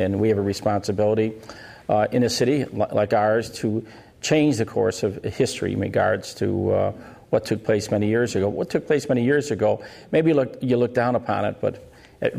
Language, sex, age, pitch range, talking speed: English, male, 50-69, 105-120 Hz, 205 wpm